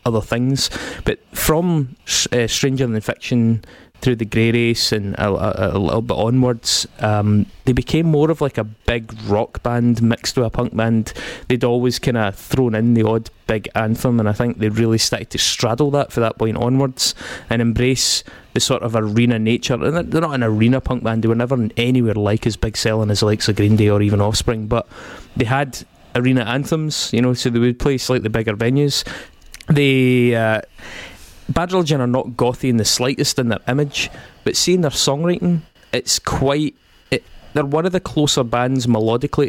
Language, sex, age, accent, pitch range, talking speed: English, male, 20-39, British, 110-130 Hz, 195 wpm